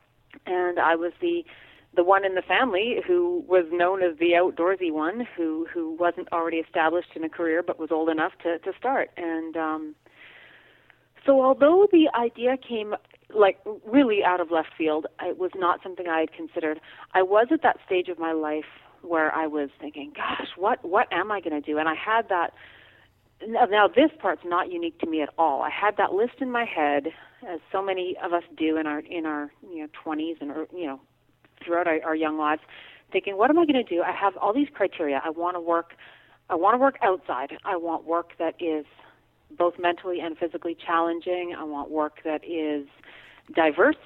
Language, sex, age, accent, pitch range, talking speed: English, female, 40-59, American, 160-210 Hz, 205 wpm